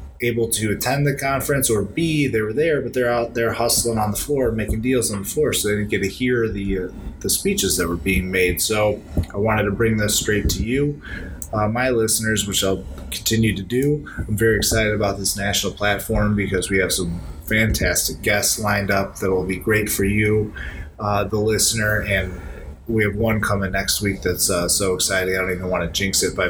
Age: 30-49